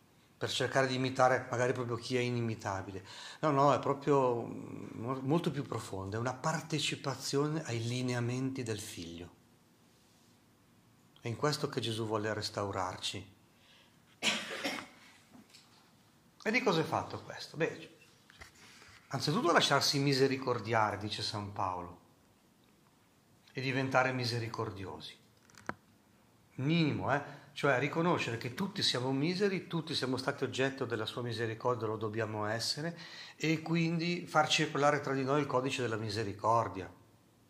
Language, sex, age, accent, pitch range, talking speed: Italian, male, 40-59, native, 110-145 Hz, 120 wpm